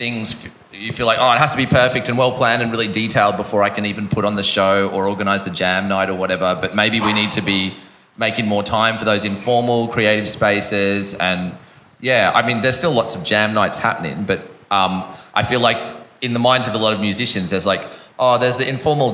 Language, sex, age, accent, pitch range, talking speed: English, male, 30-49, Australian, 95-110 Hz, 230 wpm